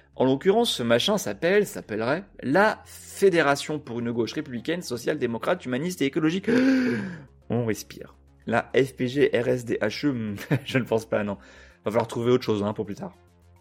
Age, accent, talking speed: 30-49, French, 165 wpm